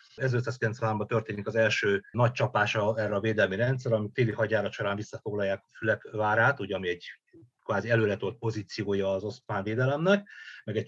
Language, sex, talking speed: Hungarian, male, 160 wpm